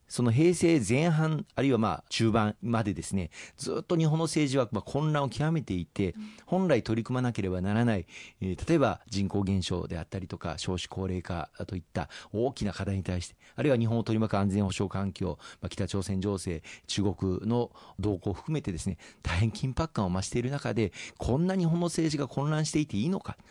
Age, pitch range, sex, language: 40-59, 95-125 Hz, male, Japanese